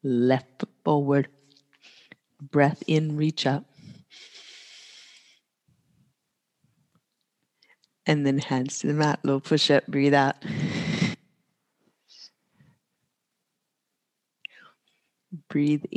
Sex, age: female, 50-69